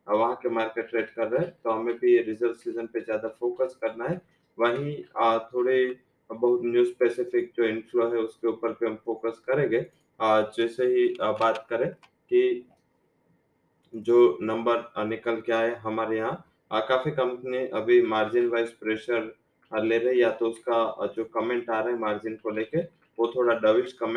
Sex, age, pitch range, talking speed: male, 20-39, 115-125 Hz, 135 wpm